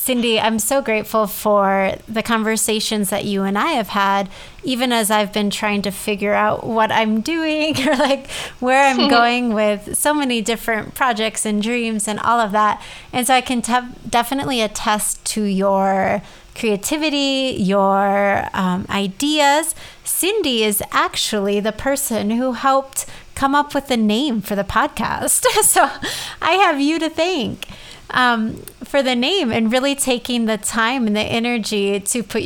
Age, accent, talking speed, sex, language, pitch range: 30-49, American, 160 wpm, female, English, 210-255 Hz